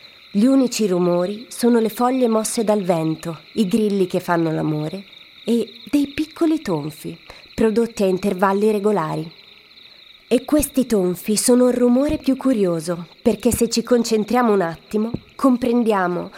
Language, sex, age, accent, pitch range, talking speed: Italian, female, 30-49, native, 185-235 Hz, 135 wpm